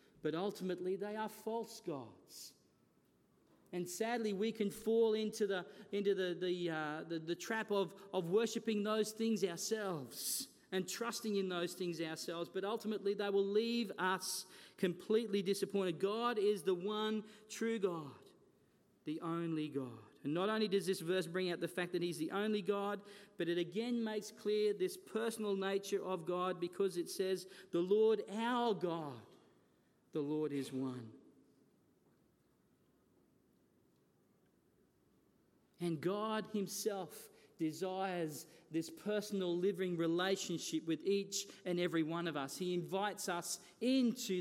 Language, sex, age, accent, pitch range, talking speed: English, male, 40-59, Australian, 160-205 Hz, 140 wpm